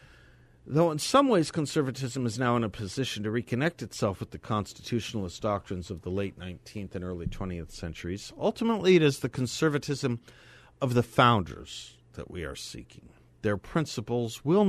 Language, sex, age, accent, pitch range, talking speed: English, male, 50-69, American, 95-135 Hz, 165 wpm